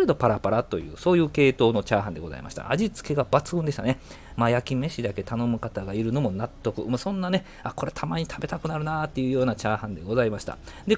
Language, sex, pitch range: Japanese, male, 105-180 Hz